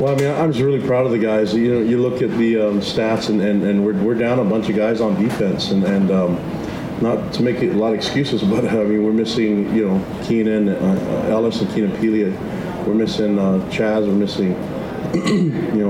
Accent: American